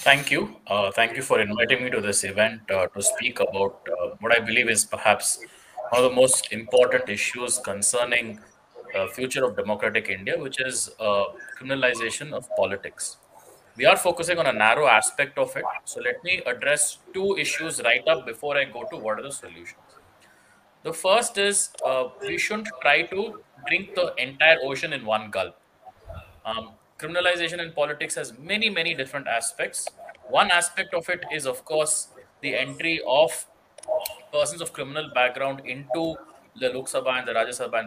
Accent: Indian